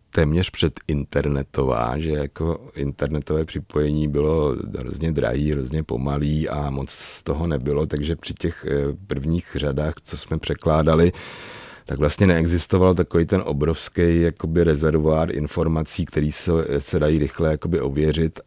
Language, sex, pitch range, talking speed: Czech, male, 75-90 Hz, 130 wpm